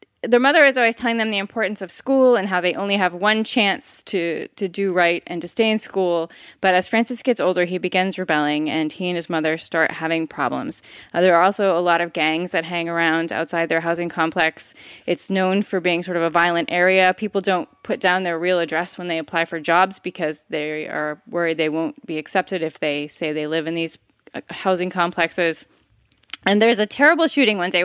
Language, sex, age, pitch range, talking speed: English, female, 20-39, 170-195 Hz, 220 wpm